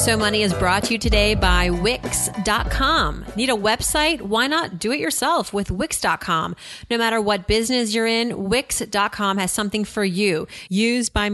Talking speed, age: 170 wpm, 30-49